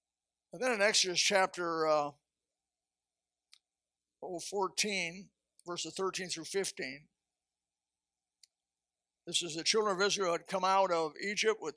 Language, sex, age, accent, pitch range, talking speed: English, male, 60-79, American, 160-190 Hz, 115 wpm